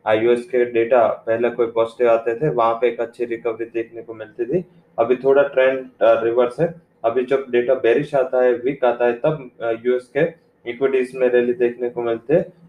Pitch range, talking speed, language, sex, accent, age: 115-130 Hz, 190 wpm, English, male, Indian, 20-39